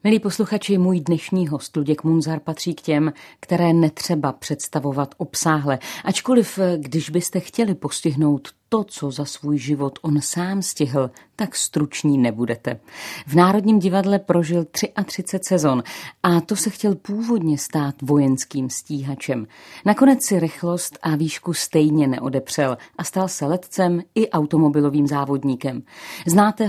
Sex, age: female, 40-59